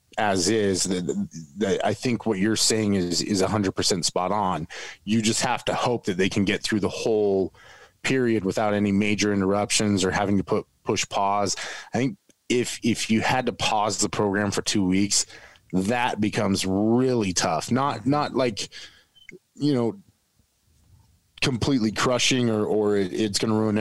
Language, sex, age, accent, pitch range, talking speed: English, male, 20-39, American, 95-120 Hz, 165 wpm